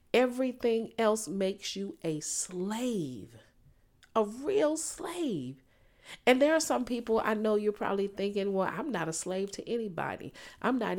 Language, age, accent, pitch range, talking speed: English, 40-59, American, 155-200 Hz, 155 wpm